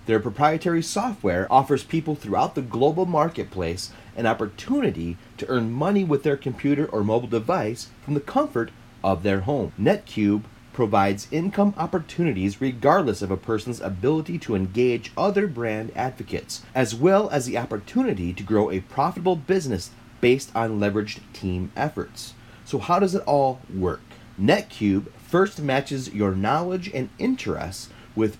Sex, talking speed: male, 145 wpm